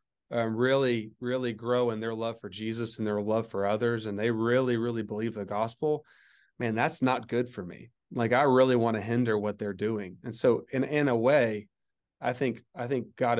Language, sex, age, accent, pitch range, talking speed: English, male, 30-49, American, 110-125 Hz, 210 wpm